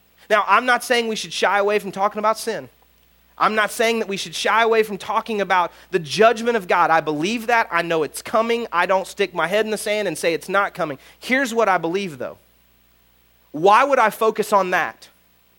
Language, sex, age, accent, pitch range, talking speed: English, male, 30-49, American, 155-225 Hz, 225 wpm